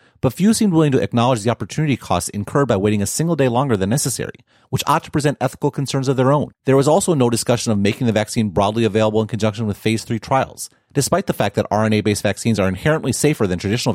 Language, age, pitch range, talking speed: English, 30-49, 100-140 Hz, 235 wpm